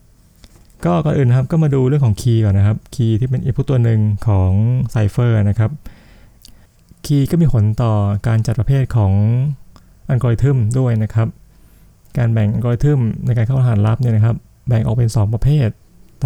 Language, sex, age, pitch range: Thai, male, 20-39, 105-130 Hz